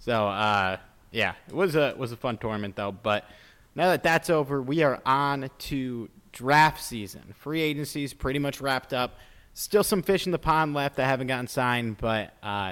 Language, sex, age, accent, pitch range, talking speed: English, male, 30-49, American, 105-135 Hz, 200 wpm